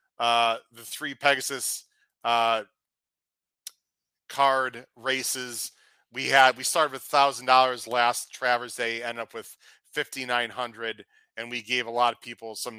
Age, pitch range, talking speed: 40-59, 120-165 Hz, 140 wpm